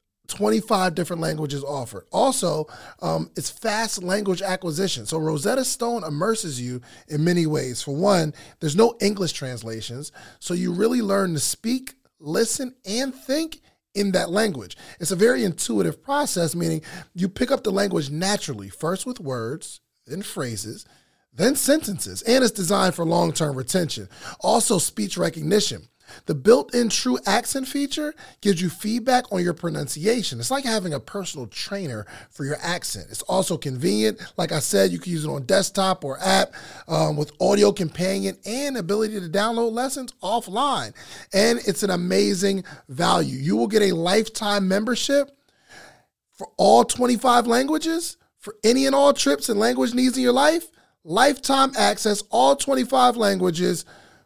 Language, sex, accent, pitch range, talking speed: English, male, American, 155-235 Hz, 155 wpm